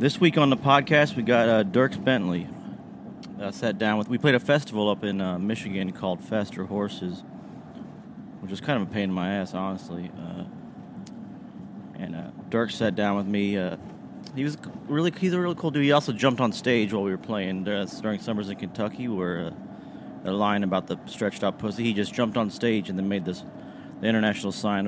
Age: 30-49